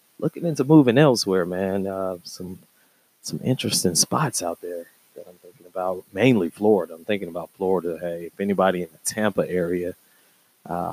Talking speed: 165 wpm